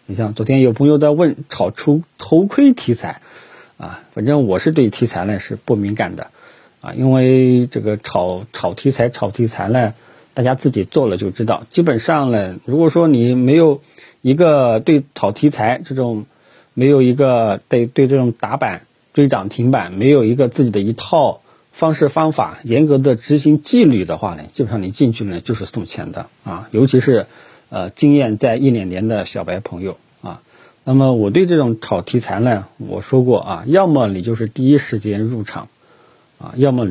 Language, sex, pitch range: Chinese, male, 110-140 Hz